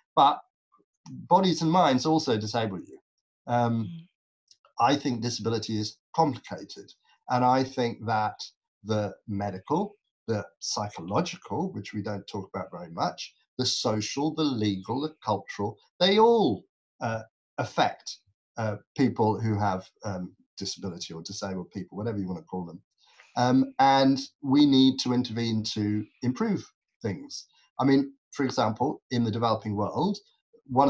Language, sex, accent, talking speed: English, male, British, 140 wpm